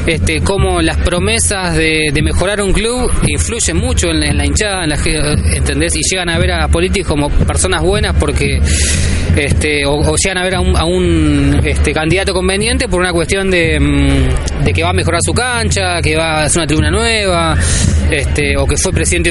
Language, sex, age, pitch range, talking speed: Spanish, male, 20-39, 75-85 Hz, 200 wpm